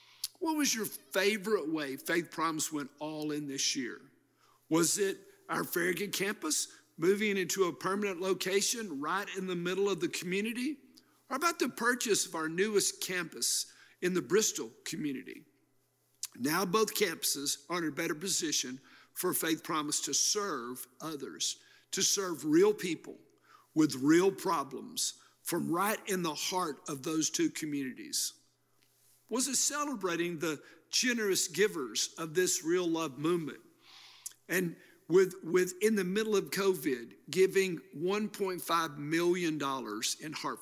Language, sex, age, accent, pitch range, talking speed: English, male, 50-69, American, 160-230 Hz, 140 wpm